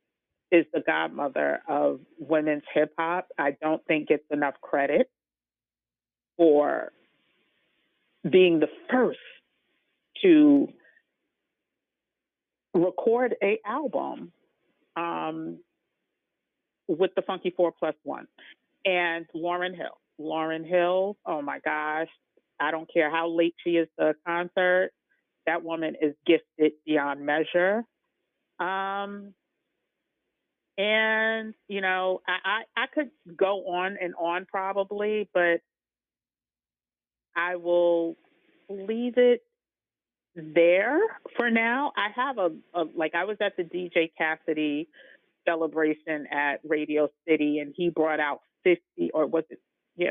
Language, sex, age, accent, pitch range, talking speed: English, female, 40-59, American, 160-205 Hz, 115 wpm